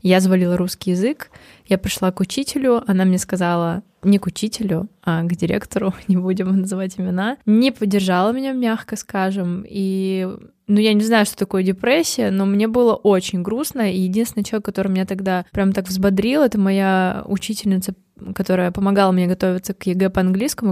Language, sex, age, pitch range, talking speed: Russian, female, 20-39, 180-205 Hz, 170 wpm